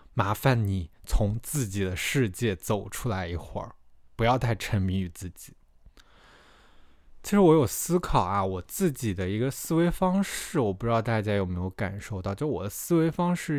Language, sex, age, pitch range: Chinese, male, 20-39, 95-130 Hz